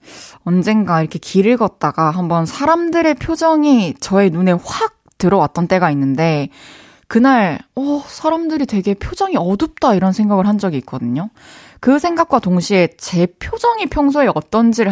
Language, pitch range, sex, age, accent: Korean, 190-290 Hz, female, 20-39, native